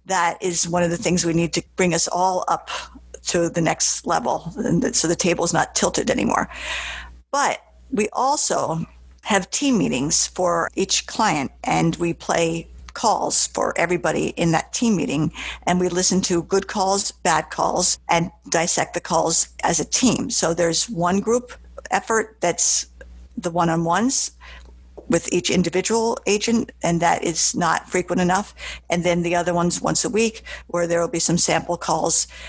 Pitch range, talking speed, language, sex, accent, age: 170-210 Hz, 165 wpm, English, female, American, 50-69